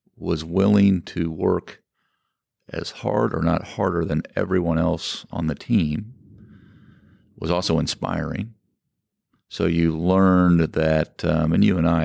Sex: male